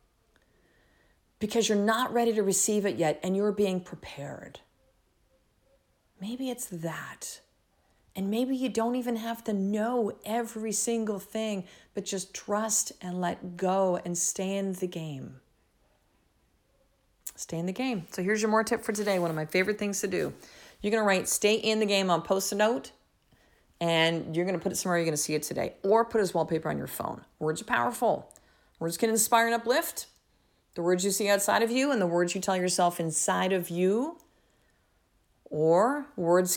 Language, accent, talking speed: English, American, 180 wpm